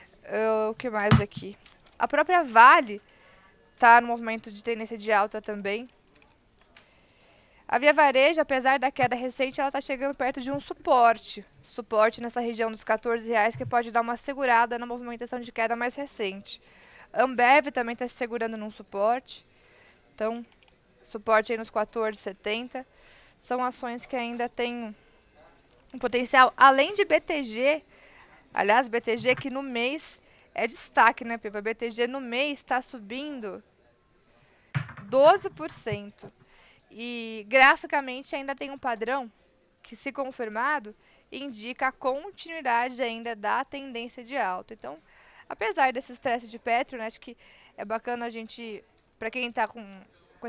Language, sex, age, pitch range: Portuguese, female, 20-39, 225-270 Hz